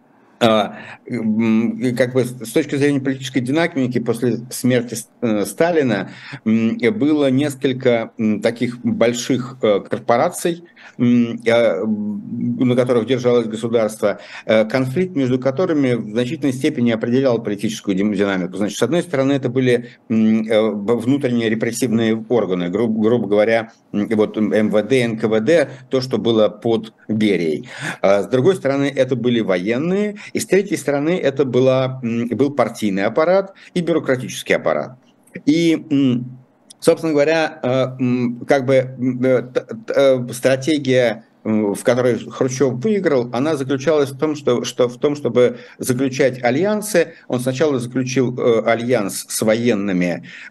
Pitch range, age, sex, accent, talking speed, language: 110-140 Hz, 60-79, male, native, 110 wpm, Russian